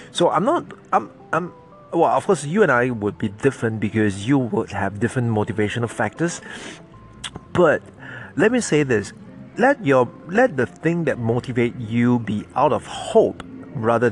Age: 30-49